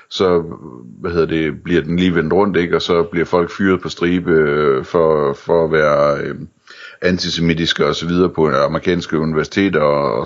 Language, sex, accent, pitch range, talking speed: Danish, male, native, 75-90 Hz, 185 wpm